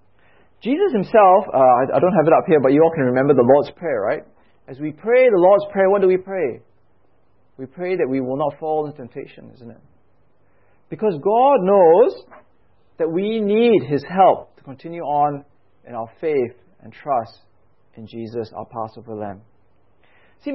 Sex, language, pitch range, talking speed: male, English, 130-195 Hz, 180 wpm